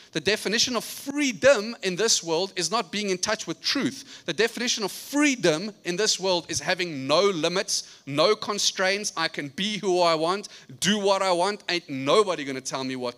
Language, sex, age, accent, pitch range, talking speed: English, male, 30-49, South African, 135-195 Hz, 200 wpm